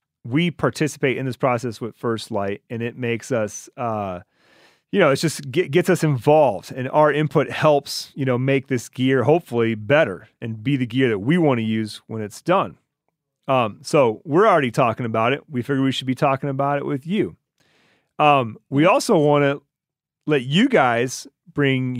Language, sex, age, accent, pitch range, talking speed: English, male, 30-49, American, 125-155 Hz, 190 wpm